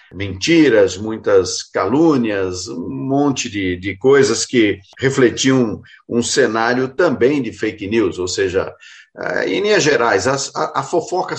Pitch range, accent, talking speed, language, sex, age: 115-165 Hz, Brazilian, 125 wpm, Portuguese, male, 50-69